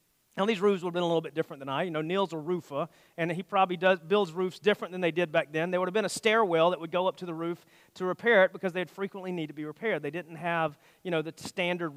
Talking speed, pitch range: 295 wpm, 160-200 Hz